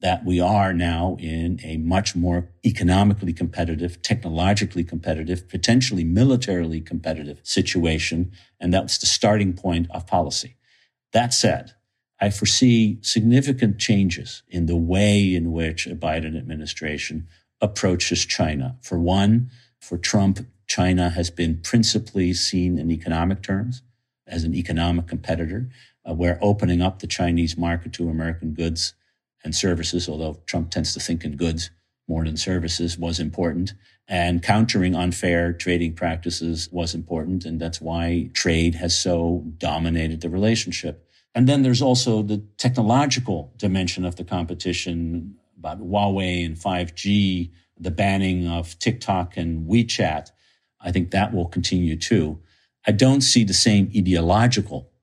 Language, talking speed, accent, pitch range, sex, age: English, 140 wpm, American, 85-100 Hz, male, 50-69